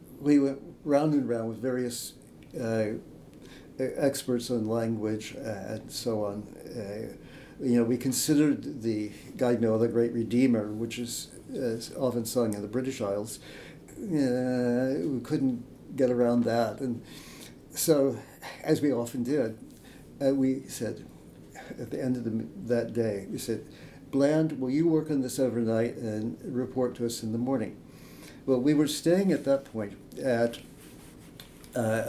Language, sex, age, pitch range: English, male, 60-79, 115-135 Hz